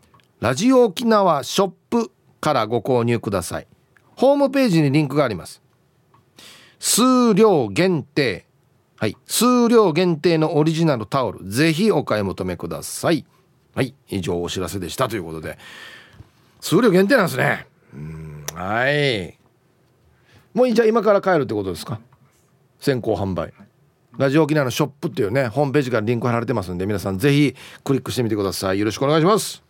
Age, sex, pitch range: 40-59, male, 110-180 Hz